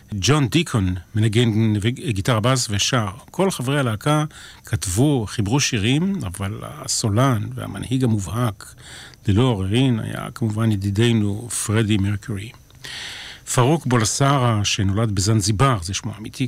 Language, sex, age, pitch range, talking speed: Hebrew, male, 40-59, 105-130 Hz, 110 wpm